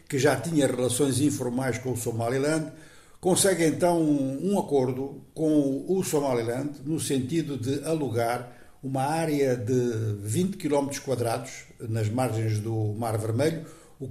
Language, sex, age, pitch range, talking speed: Portuguese, male, 60-79, 125-160 Hz, 130 wpm